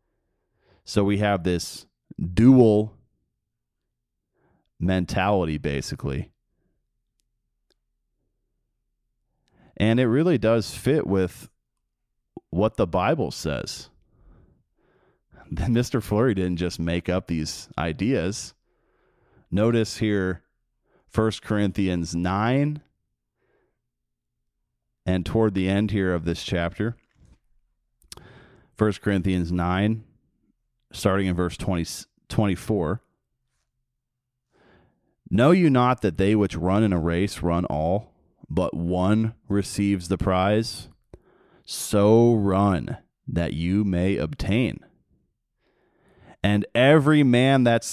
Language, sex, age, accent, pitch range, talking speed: English, male, 30-49, American, 90-115 Hz, 90 wpm